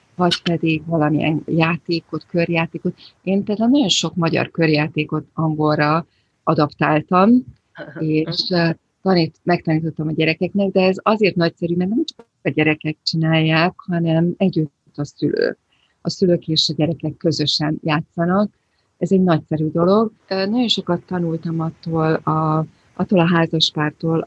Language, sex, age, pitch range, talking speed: English, female, 40-59, 160-180 Hz, 125 wpm